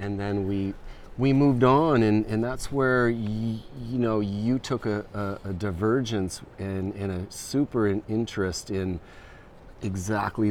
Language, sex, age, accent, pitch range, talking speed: English, male, 40-59, American, 95-115 Hz, 150 wpm